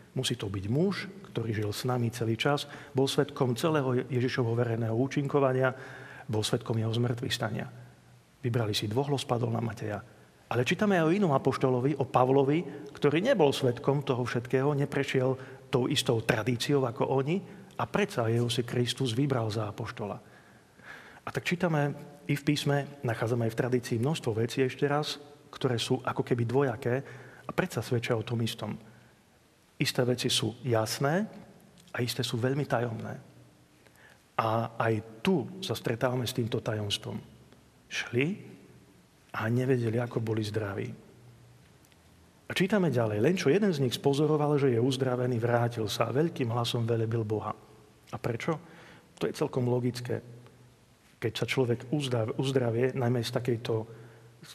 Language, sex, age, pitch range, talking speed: Slovak, male, 40-59, 115-140 Hz, 150 wpm